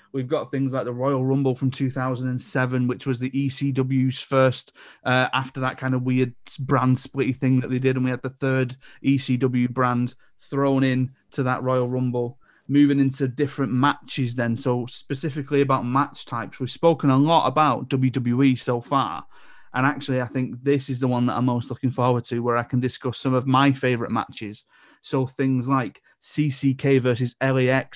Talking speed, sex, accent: 185 wpm, male, British